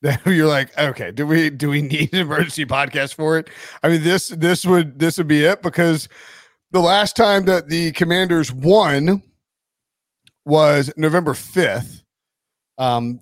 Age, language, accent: 40-59, English, American